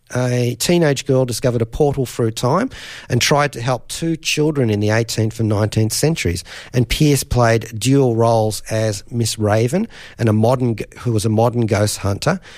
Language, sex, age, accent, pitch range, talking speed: English, male, 40-59, Australian, 105-135 Hz, 175 wpm